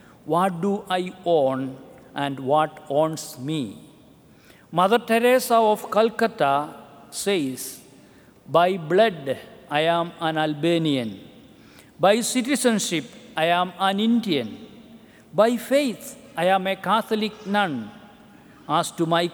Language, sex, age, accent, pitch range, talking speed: English, male, 50-69, Indian, 155-210 Hz, 110 wpm